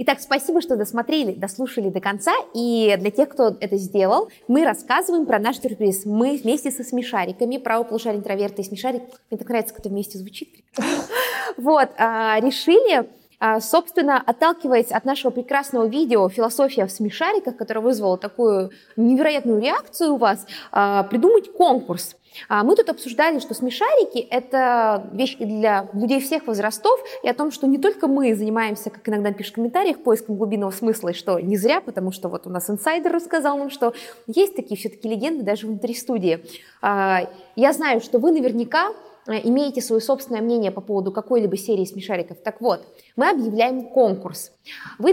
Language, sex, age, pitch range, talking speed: Russian, female, 20-39, 210-275 Hz, 160 wpm